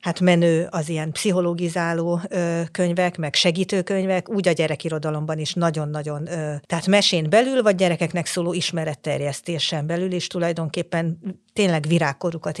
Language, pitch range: Hungarian, 160-185 Hz